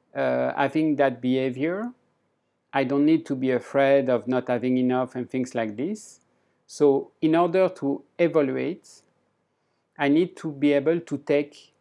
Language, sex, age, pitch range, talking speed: English, male, 50-69, 135-185 Hz, 150 wpm